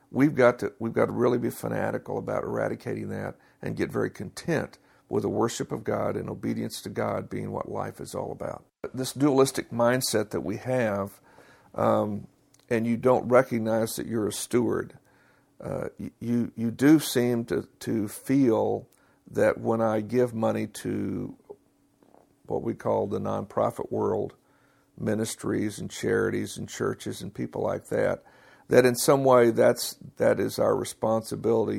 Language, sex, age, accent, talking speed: English, male, 60-79, American, 160 wpm